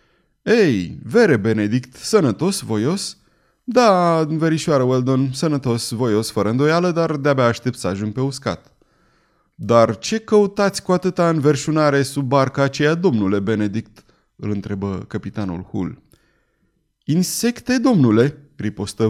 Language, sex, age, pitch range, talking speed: Romanian, male, 30-49, 105-160 Hz, 115 wpm